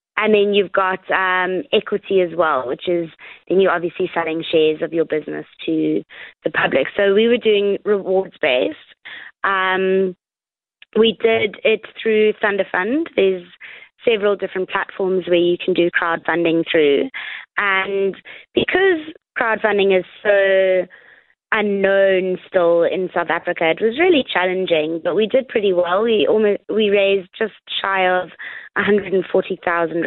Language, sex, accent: English, female, British